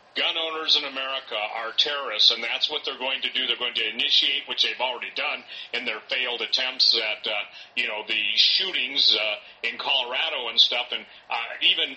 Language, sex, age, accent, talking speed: English, male, 40-59, American, 195 wpm